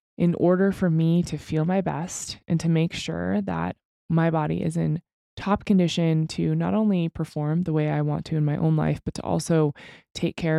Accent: American